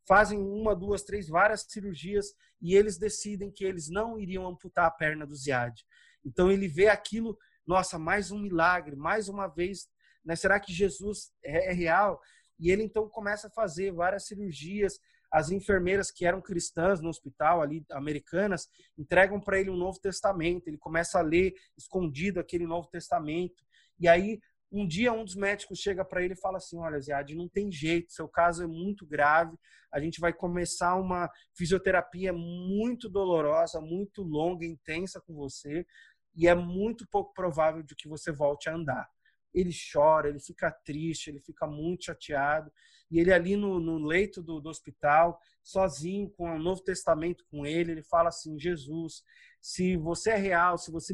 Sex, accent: male, Brazilian